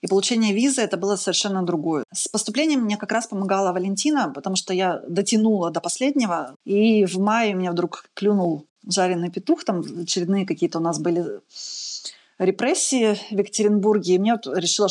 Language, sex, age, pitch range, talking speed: Russian, female, 20-39, 175-215 Hz, 175 wpm